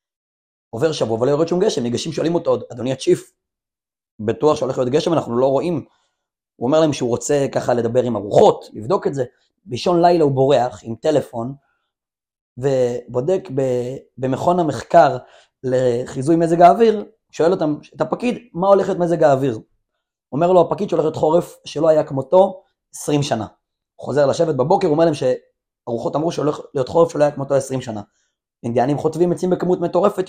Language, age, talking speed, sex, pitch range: Hebrew, 30-49, 165 wpm, male, 130-175 Hz